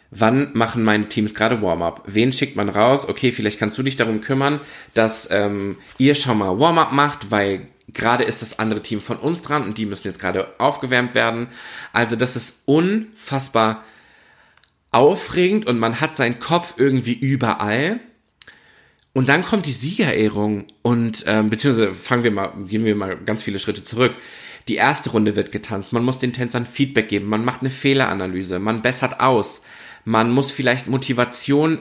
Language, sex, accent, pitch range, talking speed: German, male, German, 105-135 Hz, 170 wpm